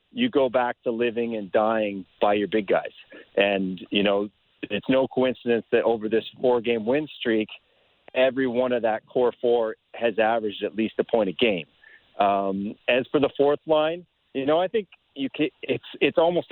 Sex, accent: male, American